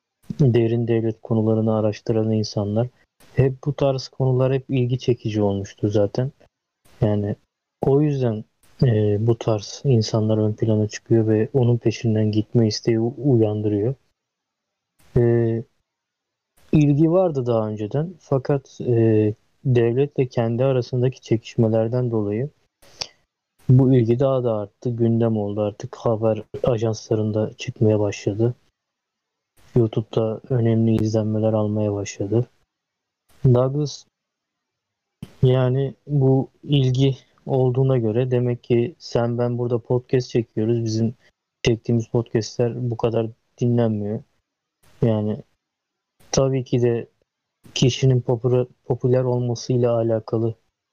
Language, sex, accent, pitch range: Turkish, male, native, 110-130 Hz